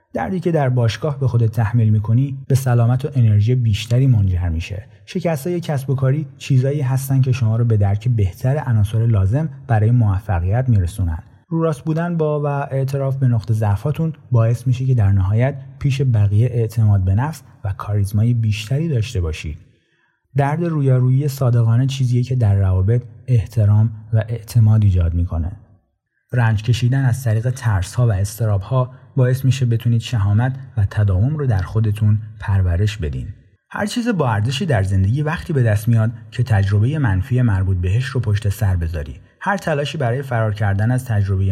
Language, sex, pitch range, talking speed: Persian, male, 105-130 Hz, 160 wpm